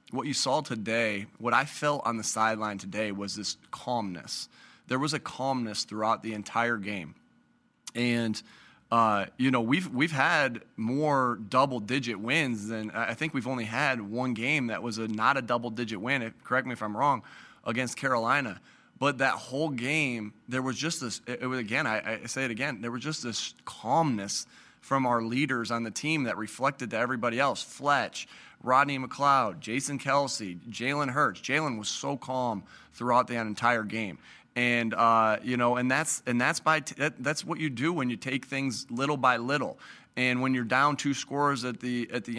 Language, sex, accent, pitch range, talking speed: English, male, American, 115-140 Hz, 185 wpm